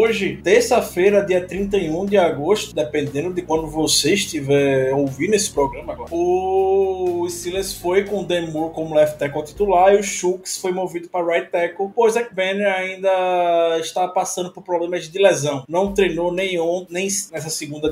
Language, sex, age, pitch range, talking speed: Portuguese, male, 20-39, 175-240 Hz, 165 wpm